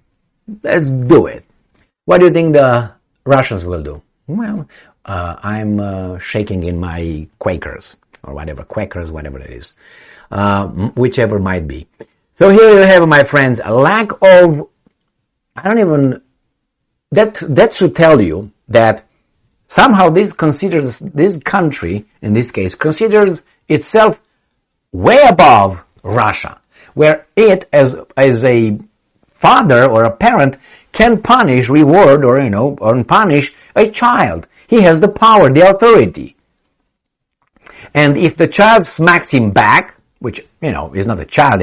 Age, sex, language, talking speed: 50-69, male, English, 145 wpm